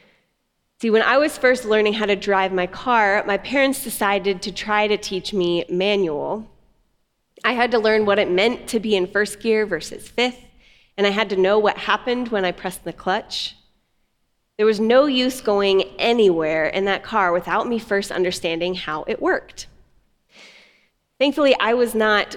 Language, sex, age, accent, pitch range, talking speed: English, female, 30-49, American, 190-235 Hz, 175 wpm